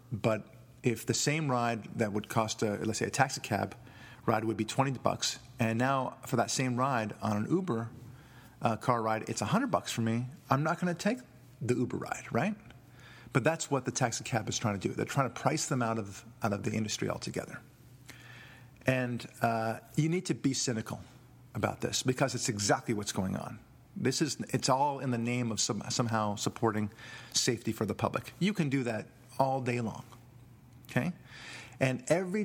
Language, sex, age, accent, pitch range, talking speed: English, male, 40-59, American, 115-135 Hz, 200 wpm